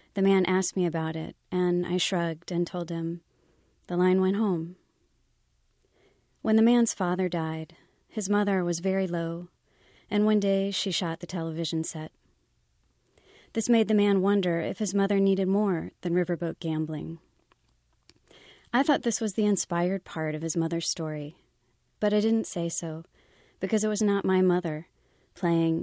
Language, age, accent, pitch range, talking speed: English, 30-49, American, 165-195 Hz, 165 wpm